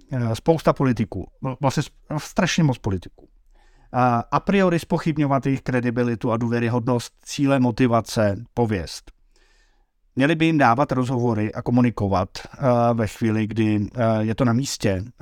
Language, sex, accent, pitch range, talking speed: Czech, male, native, 115-140 Hz, 120 wpm